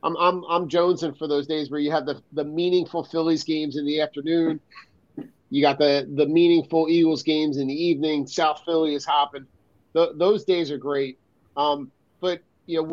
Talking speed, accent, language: 185 wpm, American, English